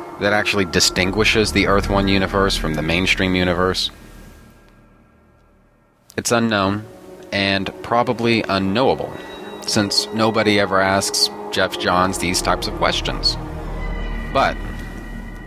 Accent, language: American, English